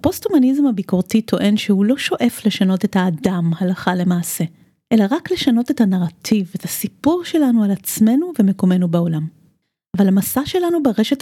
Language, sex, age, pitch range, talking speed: Hebrew, female, 30-49, 190-230 Hz, 145 wpm